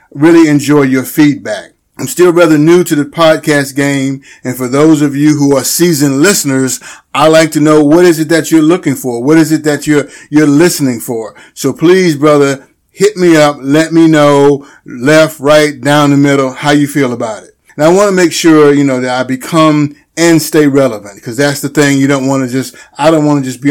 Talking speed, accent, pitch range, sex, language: 225 wpm, American, 135-155 Hz, male, English